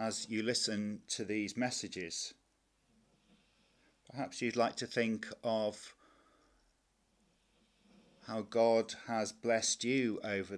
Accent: British